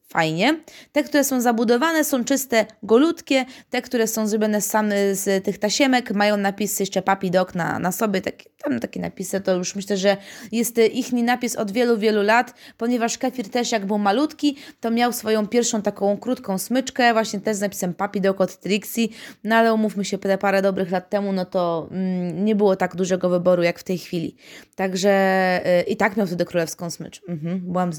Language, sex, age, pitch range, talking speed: Polish, female, 20-39, 190-235 Hz, 195 wpm